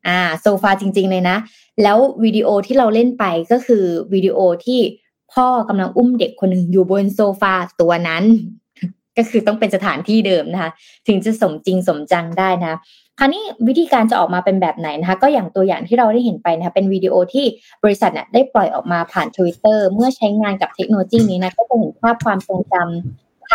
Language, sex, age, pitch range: Thai, female, 20-39, 180-235 Hz